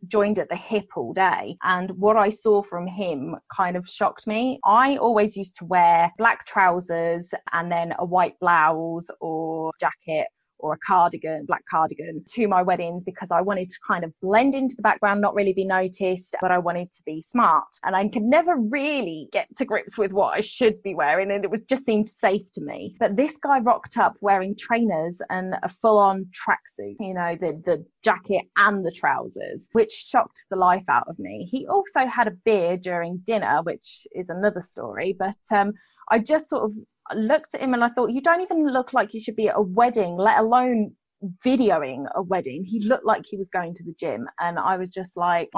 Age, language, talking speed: 20-39, English, 210 wpm